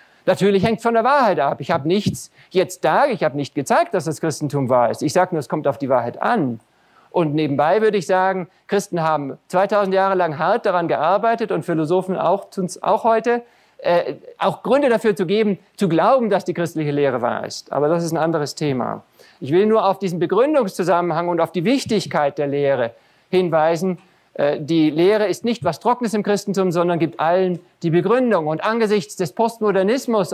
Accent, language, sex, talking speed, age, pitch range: German, German, male, 195 wpm, 50-69, 155-205 Hz